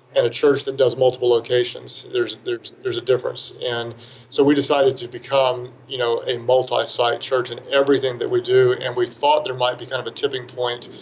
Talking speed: 210 wpm